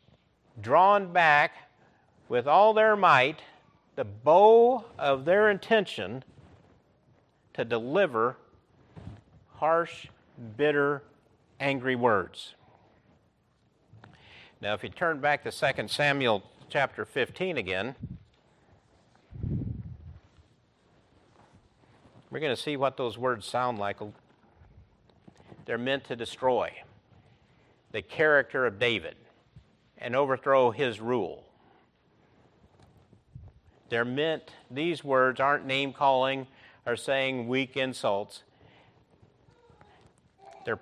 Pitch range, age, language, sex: 120-145 Hz, 50-69, English, male